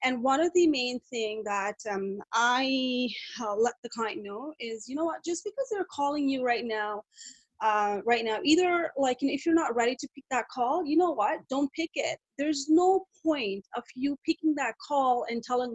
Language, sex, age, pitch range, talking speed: English, female, 30-49, 225-295 Hz, 215 wpm